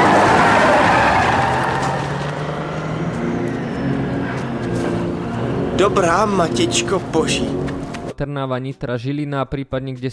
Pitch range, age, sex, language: 130-155 Hz, 20-39, male, Slovak